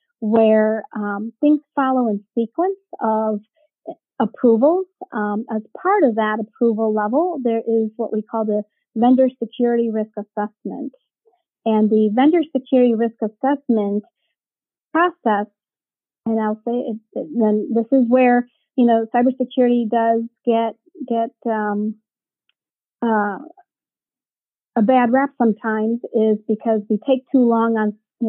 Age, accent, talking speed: 40-59, American, 125 wpm